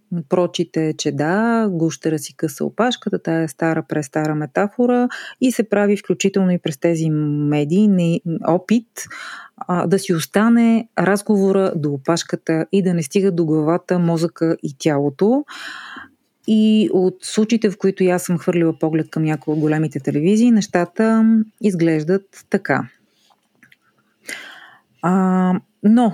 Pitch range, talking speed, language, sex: 165-200 Hz, 125 wpm, Bulgarian, female